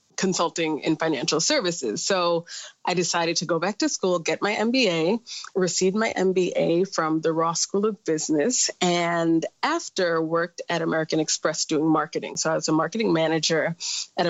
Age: 30-49